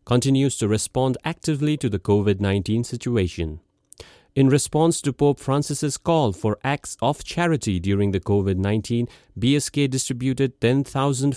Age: 40-59